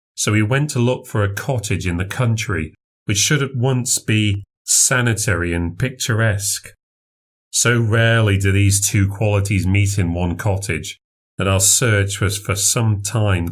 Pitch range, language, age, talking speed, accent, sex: 95-110 Hz, English, 40-59, 160 wpm, British, male